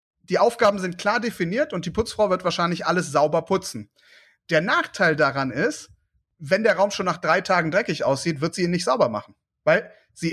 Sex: male